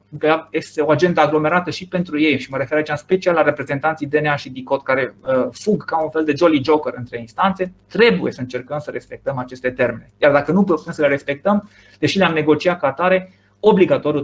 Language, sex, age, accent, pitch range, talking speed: Romanian, male, 20-39, native, 140-190 Hz, 205 wpm